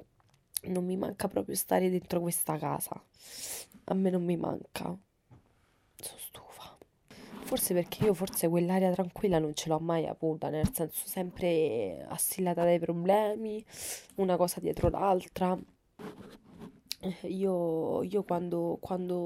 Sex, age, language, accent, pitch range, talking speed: female, 20-39, Italian, native, 170-195 Hz, 125 wpm